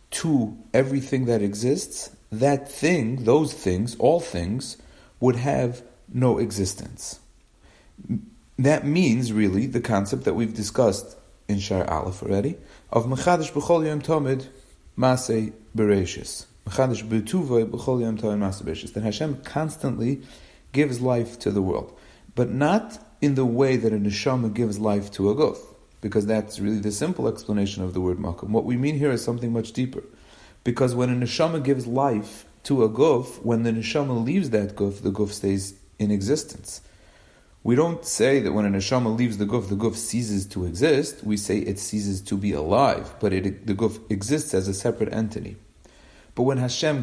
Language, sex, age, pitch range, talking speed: English, male, 40-59, 100-130 Hz, 165 wpm